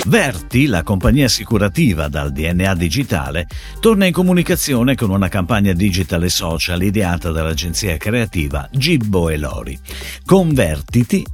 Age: 50-69